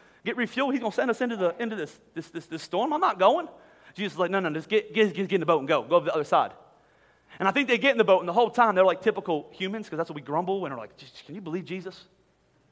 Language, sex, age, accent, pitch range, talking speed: English, male, 30-49, American, 225-365 Hz, 305 wpm